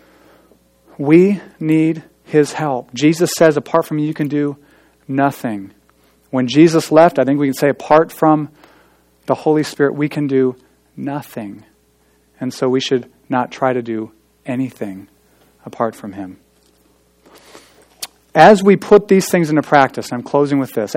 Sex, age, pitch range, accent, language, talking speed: male, 40-59, 110-165 Hz, American, English, 150 wpm